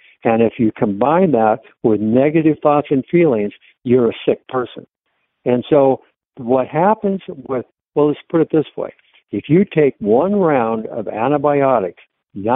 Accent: American